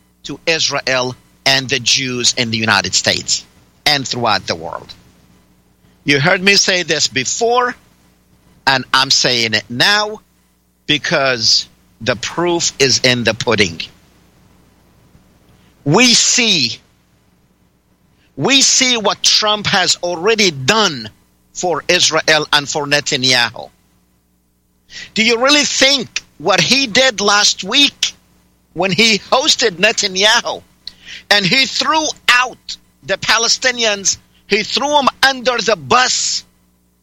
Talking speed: 115 wpm